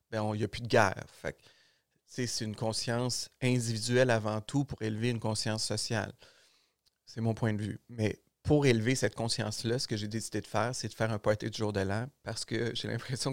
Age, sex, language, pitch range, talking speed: 30-49, male, French, 110-125 Hz, 215 wpm